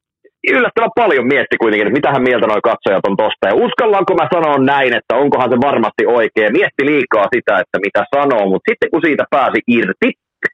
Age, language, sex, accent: 30-49, Finnish, male, native